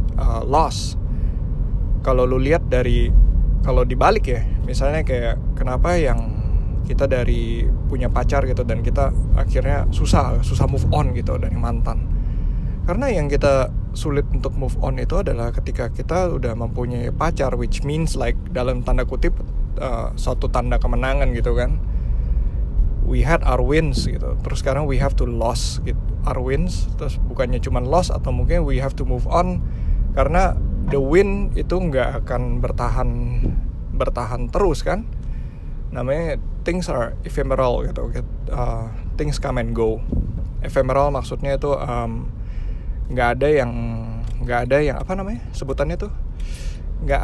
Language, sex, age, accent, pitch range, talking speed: Indonesian, male, 20-39, native, 100-135 Hz, 145 wpm